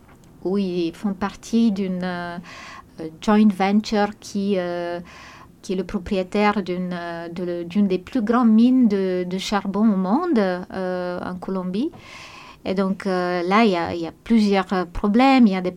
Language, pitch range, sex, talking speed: German, 180-210 Hz, female, 170 wpm